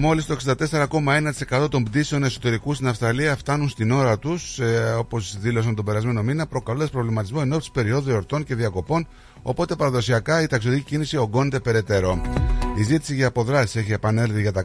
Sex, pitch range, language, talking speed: male, 105-135 Hz, Greek, 160 wpm